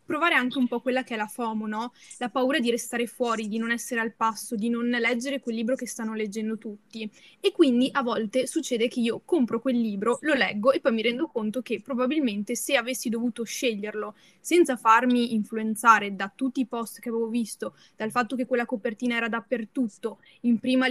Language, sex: Italian, female